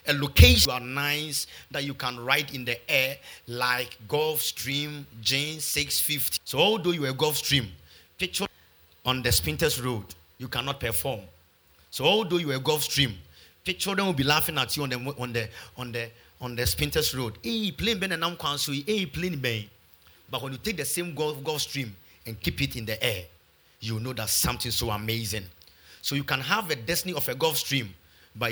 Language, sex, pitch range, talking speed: English, male, 110-150 Hz, 185 wpm